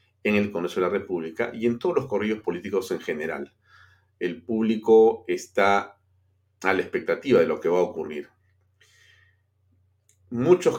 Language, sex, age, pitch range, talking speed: Spanish, male, 40-59, 95-110 Hz, 150 wpm